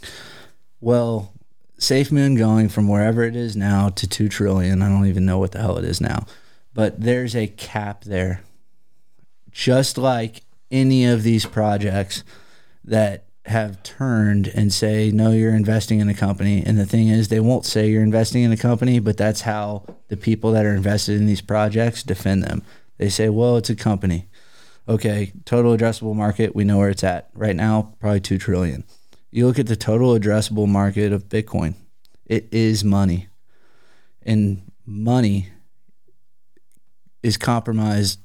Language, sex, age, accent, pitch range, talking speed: English, male, 20-39, American, 100-115 Hz, 165 wpm